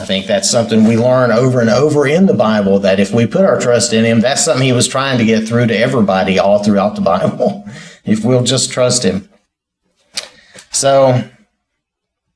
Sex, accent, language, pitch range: male, American, English, 115-175 Hz